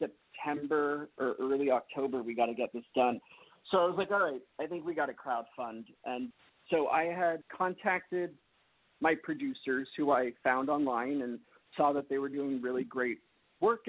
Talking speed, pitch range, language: 180 wpm, 130-160 Hz, English